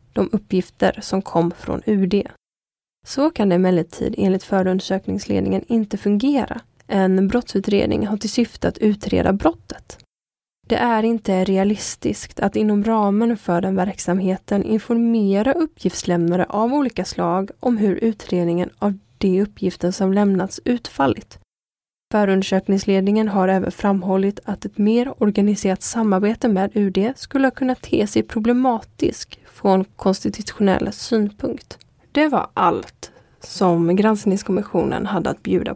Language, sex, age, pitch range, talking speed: Swedish, female, 20-39, 185-220 Hz, 125 wpm